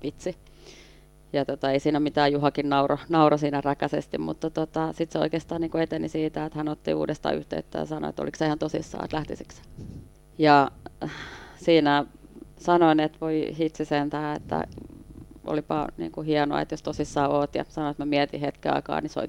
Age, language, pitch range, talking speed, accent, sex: 30-49, Finnish, 140-155 Hz, 175 wpm, native, female